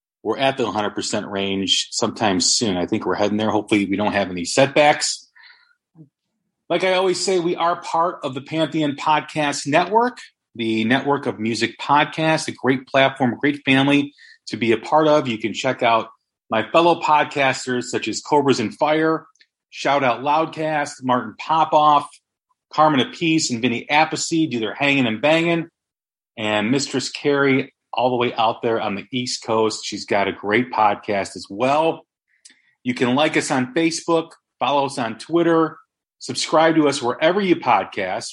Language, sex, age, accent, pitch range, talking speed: English, male, 40-59, American, 120-155 Hz, 170 wpm